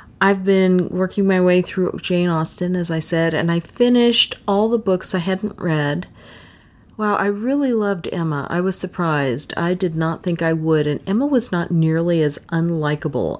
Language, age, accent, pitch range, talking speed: English, 40-59, American, 155-200 Hz, 185 wpm